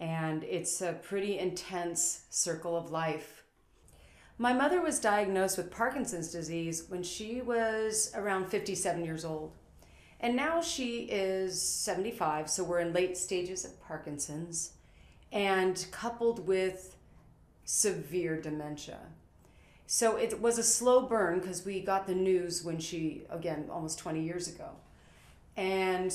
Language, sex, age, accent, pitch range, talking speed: English, female, 40-59, American, 165-205 Hz, 135 wpm